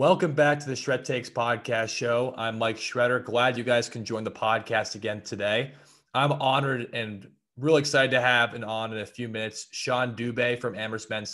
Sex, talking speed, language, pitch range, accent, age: male, 200 wpm, English, 110-130 Hz, American, 20-39